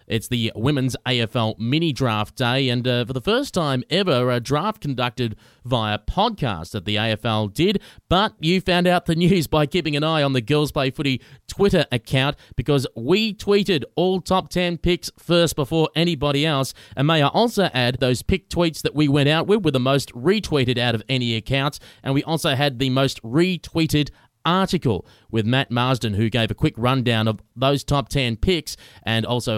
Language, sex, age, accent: English, male, 30-49, Australian